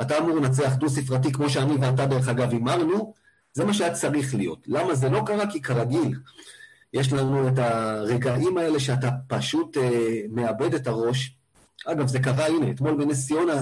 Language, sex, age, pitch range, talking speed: Hebrew, male, 40-59, 125-160 Hz, 175 wpm